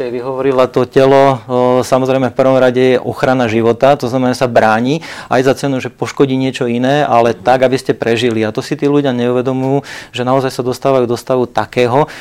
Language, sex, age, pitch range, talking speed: Slovak, male, 40-59, 120-130 Hz, 190 wpm